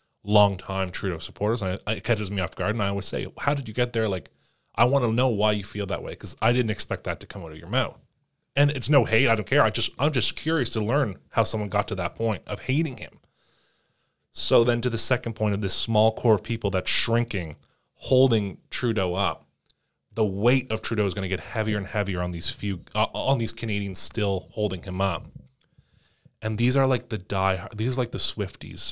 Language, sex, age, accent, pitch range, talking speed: English, male, 20-39, American, 95-120 Hz, 235 wpm